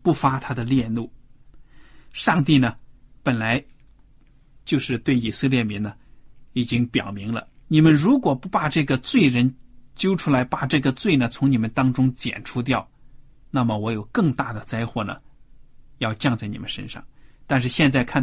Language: Chinese